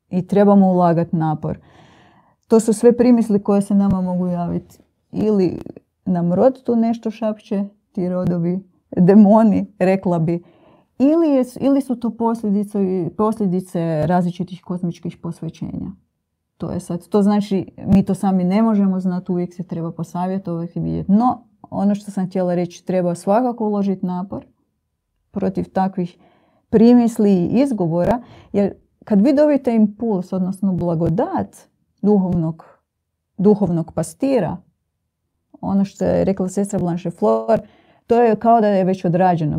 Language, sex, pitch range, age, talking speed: Croatian, female, 175-210 Hz, 30-49, 135 wpm